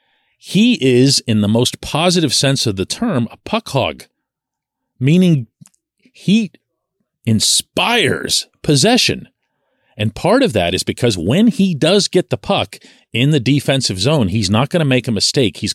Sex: male